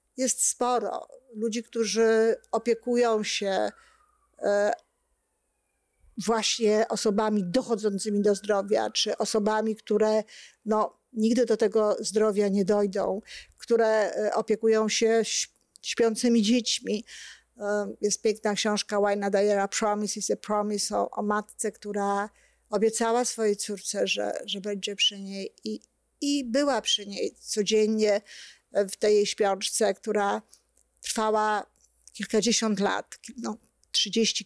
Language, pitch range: Polish, 205-230 Hz